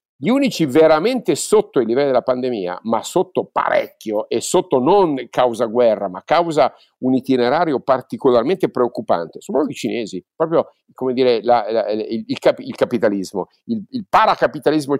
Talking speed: 150 wpm